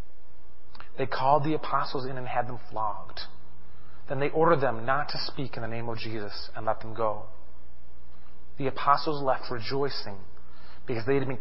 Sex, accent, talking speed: male, American, 175 wpm